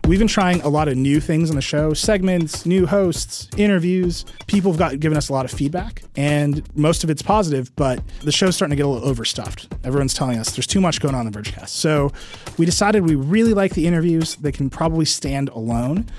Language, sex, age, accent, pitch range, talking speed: English, male, 30-49, American, 125-155 Hz, 230 wpm